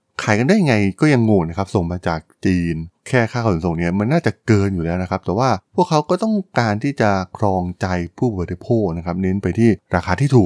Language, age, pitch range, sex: Thai, 20-39, 95-130 Hz, male